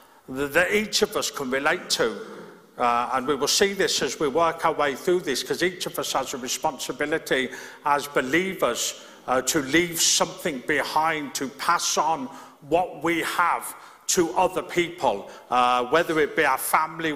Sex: male